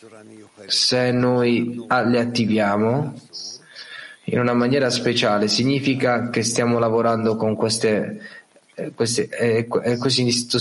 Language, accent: Italian, native